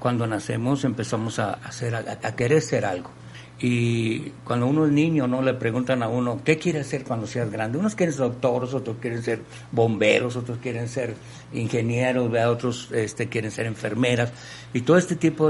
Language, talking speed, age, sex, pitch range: Spanish, 185 wpm, 60-79, male, 115-135 Hz